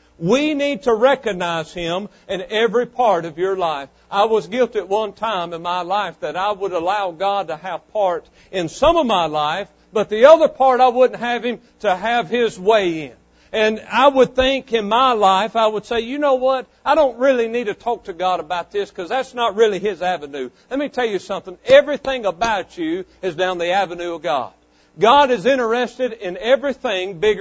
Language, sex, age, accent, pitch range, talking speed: English, male, 60-79, American, 180-255 Hz, 210 wpm